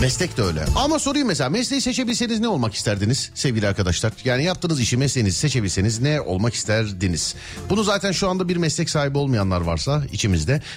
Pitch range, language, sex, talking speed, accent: 95-150 Hz, Turkish, male, 175 wpm, native